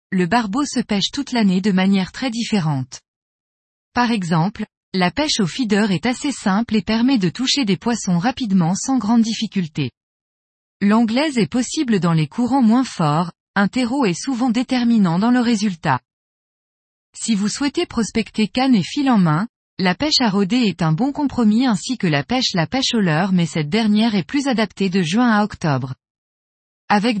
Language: French